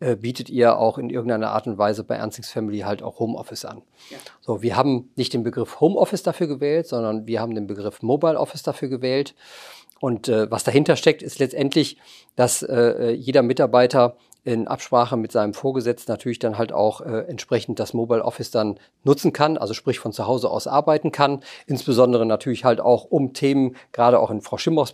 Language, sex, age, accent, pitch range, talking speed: German, male, 40-59, German, 115-130 Hz, 190 wpm